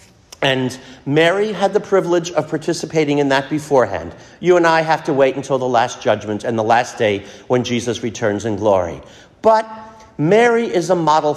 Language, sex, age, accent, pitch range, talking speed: English, male, 50-69, American, 130-180 Hz, 180 wpm